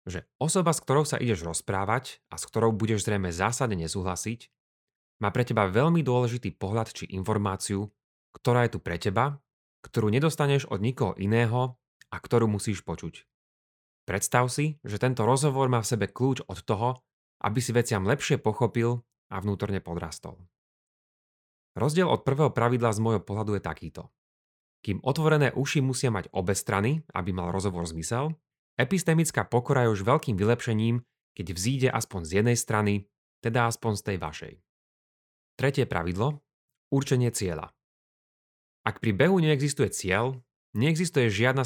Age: 30-49